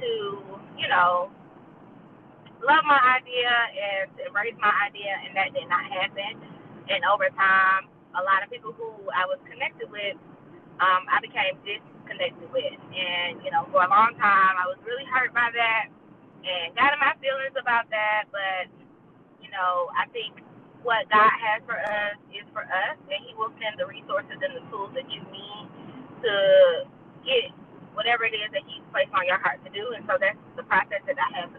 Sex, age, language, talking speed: female, 20-39, English, 190 wpm